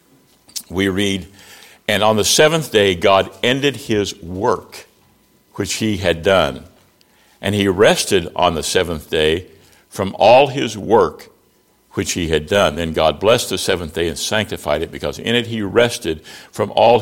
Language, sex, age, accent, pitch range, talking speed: English, male, 60-79, American, 95-115 Hz, 160 wpm